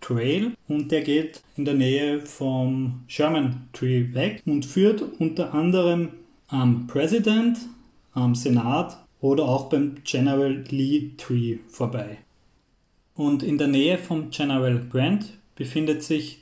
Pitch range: 125-160 Hz